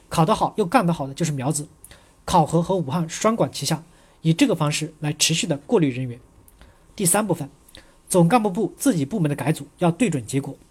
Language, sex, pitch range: Chinese, male, 145-180 Hz